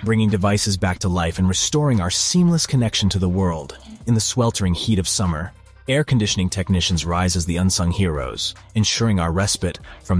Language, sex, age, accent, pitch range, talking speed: English, male, 30-49, American, 90-105 Hz, 180 wpm